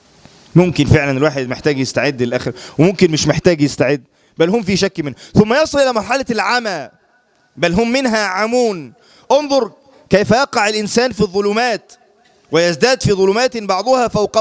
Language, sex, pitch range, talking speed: English, male, 155-215 Hz, 145 wpm